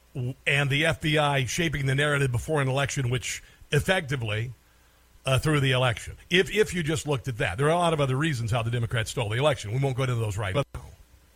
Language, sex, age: English, male, 50-69